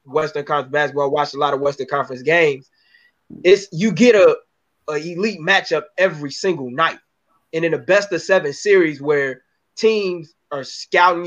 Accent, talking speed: American, 165 wpm